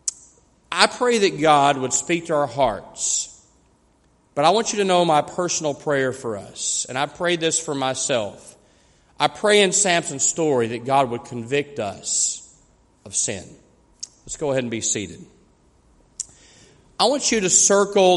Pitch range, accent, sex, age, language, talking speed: 145-190 Hz, American, male, 40-59, English, 160 wpm